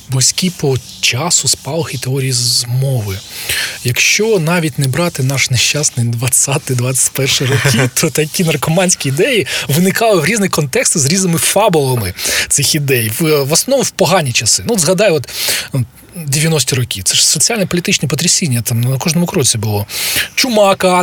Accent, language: native, Ukrainian